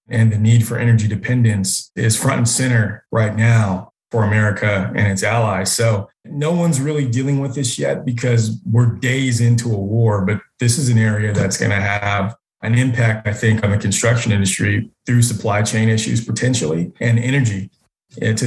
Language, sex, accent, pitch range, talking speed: English, male, American, 110-125 Hz, 180 wpm